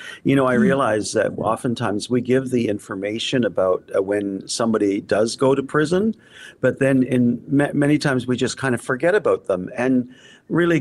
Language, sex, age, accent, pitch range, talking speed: English, male, 50-69, American, 110-145 Hz, 185 wpm